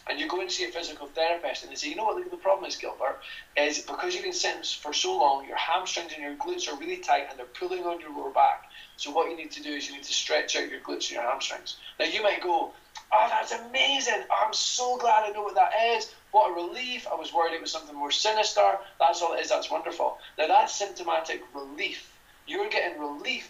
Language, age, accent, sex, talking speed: English, 20-39, British, male, 250 wpm